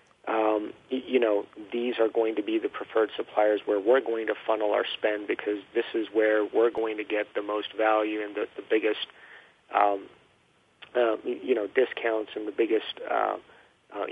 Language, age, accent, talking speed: English, 40-59, American, 185 wpm